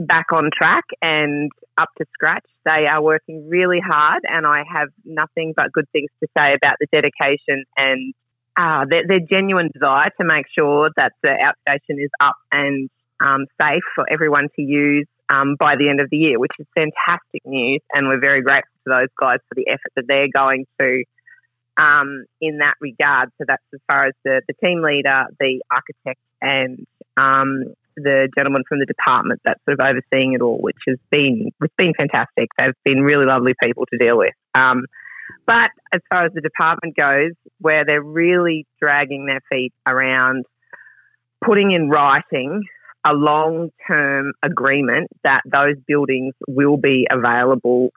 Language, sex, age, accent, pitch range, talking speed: English, female, 30-49, Australian, 135-155 Hz, 175 wpm